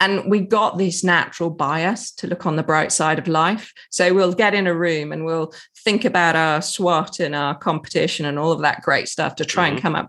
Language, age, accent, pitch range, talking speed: English, 30-49, British, 160-195 Hz, 240 wpm